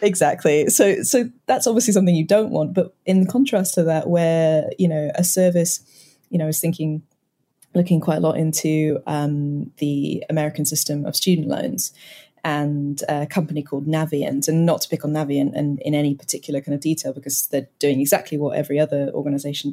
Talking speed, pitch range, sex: 190 wpm, 145-165 Hz, female